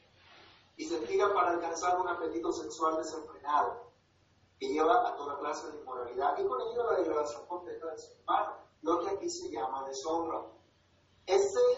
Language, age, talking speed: Spanish, 40-59, 165 wpm